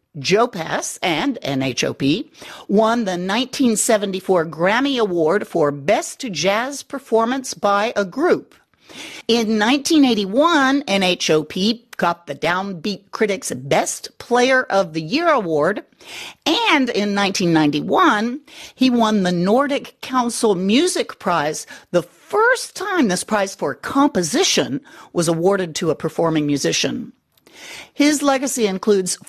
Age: 50-69